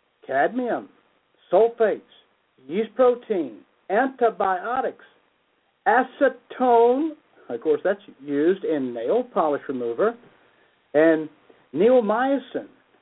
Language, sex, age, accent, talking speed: English, male, 60-79, American, 75 wpm